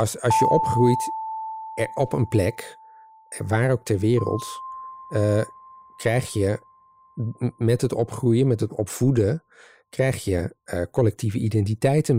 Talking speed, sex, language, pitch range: 125 wpm, male, Dutch, 105-130 Hz